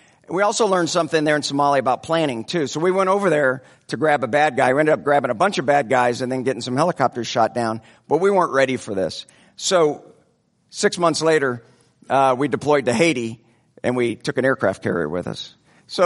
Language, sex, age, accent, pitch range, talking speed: English, male, 50-69, American, 120-155 Hz, 225 wpm